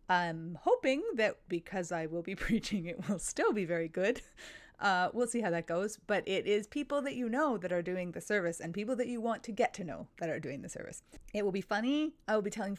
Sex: female